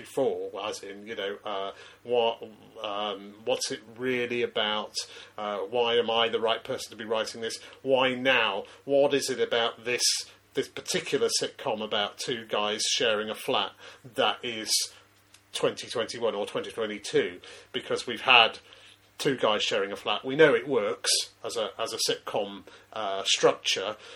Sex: male